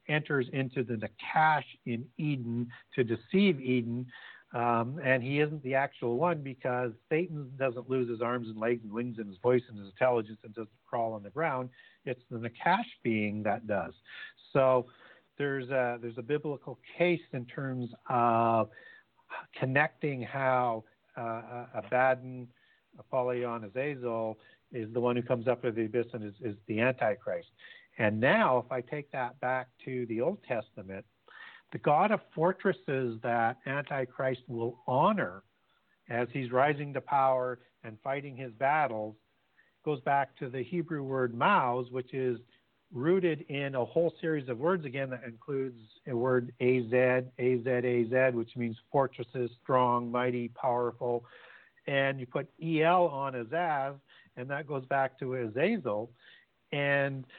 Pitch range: 120-140 Hz